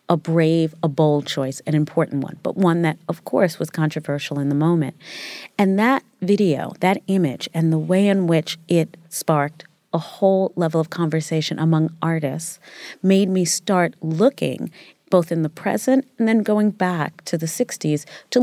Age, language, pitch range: 40-59, English, 165-200 Hz